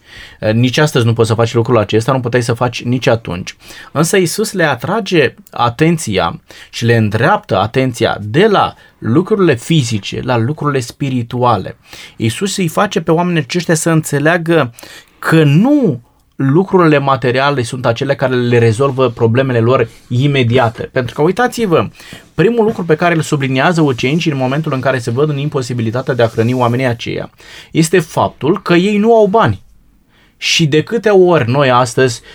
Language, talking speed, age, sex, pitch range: Romanian, 160 wpm, 20-39, male, 125-180 Hz